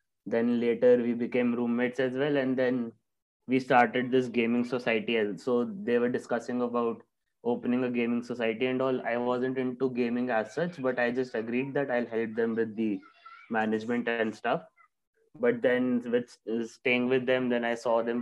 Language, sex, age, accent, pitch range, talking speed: English, male, 20-39, Indian, 110-130 Hz, 180 wpm